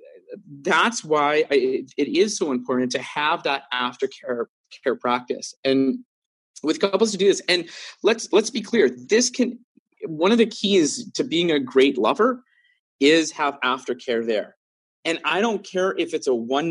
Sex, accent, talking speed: male, American, 165 wpm